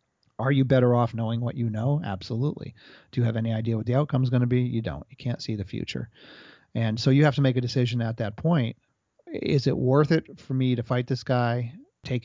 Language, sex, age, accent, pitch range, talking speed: English, male, 40-59, American, 115-135 Hz, 245 wpm